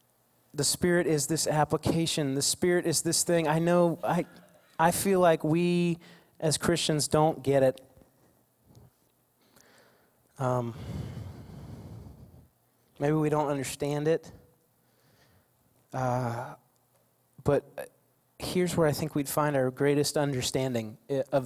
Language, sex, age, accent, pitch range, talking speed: English, male, 30-49, American, 140-200 Hz, 110 wpm